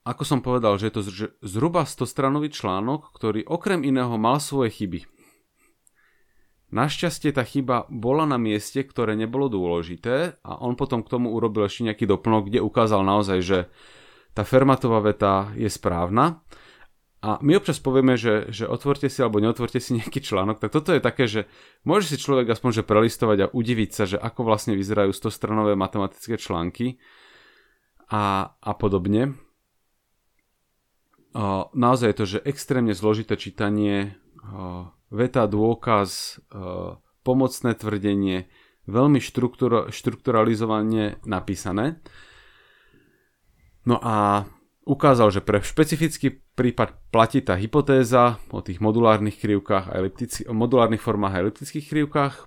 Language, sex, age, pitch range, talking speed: English, male, 30-49, 105-130 Hz, 130 wpm